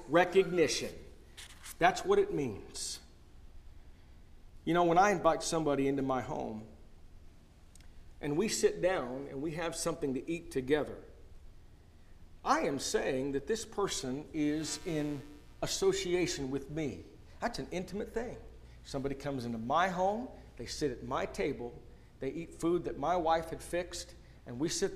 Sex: male